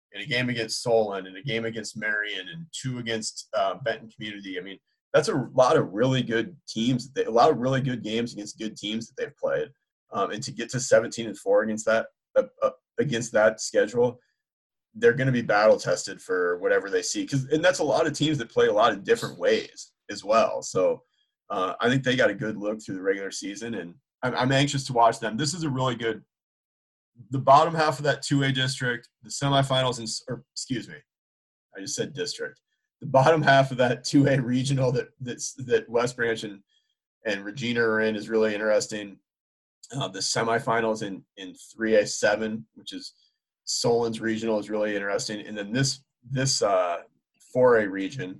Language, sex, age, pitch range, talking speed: English, male, 30-49, 110-165 Hz, 200 wpm